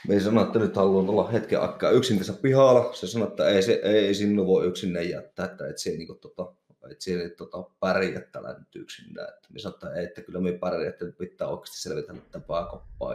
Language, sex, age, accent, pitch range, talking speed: Finnish, male, 30-49, native, 90-105 Hz, 160 wpm